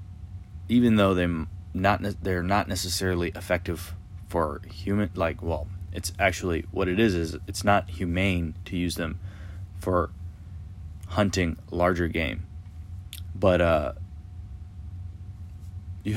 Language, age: English, 30-49